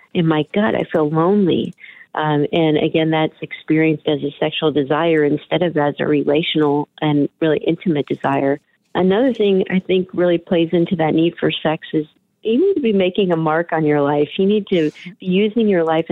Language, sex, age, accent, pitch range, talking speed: English, female, 40-59, American, 155-180 Hz, 195 wpm